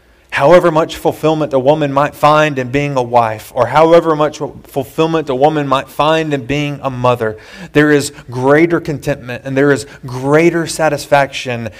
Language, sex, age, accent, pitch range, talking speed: English, male, 30-49, American, 115-145 Hz, 165 wpm